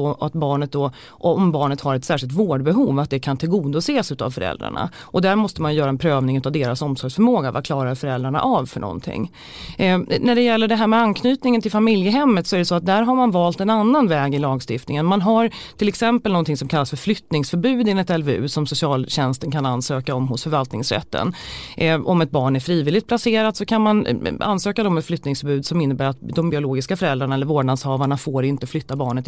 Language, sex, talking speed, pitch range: Swedish, female, 205 wpm, 140-215 Hz